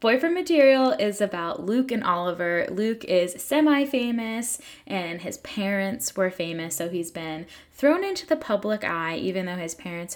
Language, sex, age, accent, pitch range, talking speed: English, female, 10-29, American, 175-245 Hz, 160 wpm